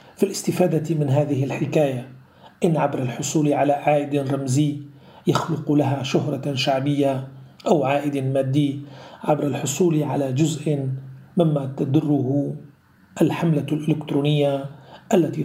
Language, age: Arabic, 40-59